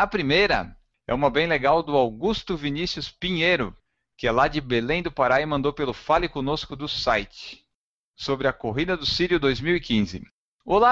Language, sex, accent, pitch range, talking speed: Portuguese, male, Brazilian, 135-175 Hz, 170 wpm